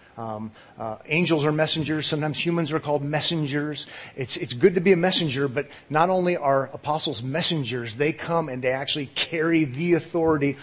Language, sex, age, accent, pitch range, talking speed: English, male, 30-49, American, 125-160 Hz, 175 wpm